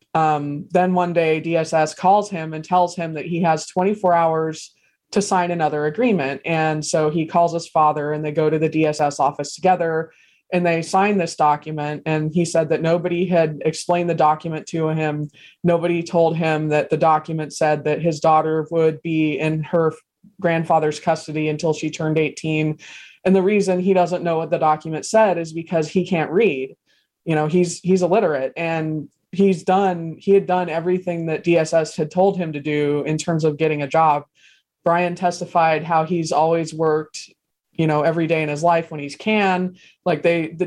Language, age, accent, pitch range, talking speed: English, 20-39, American, 155-175 Hz, 190 wpm